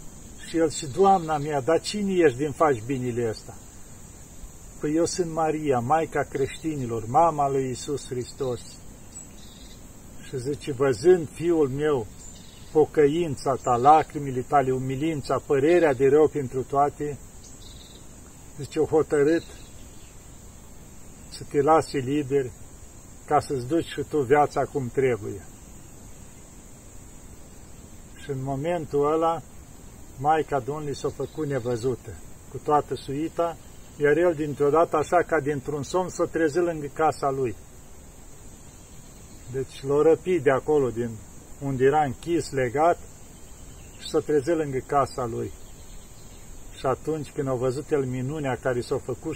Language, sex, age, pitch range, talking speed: Romanian, male, 50-69, 125-155 Hz, 130 wpm